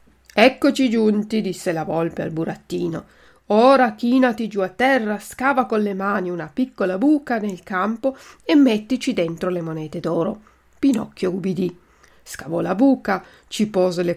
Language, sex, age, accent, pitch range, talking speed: Italian, female, 40-59, native, 185-250 Hz, 150 wpm